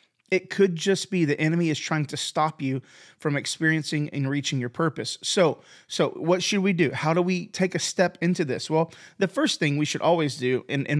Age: 30-49